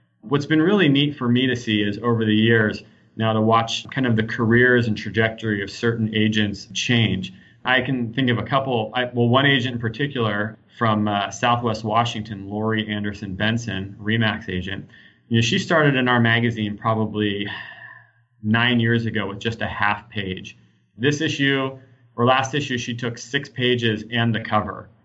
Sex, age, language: male, 30-49, English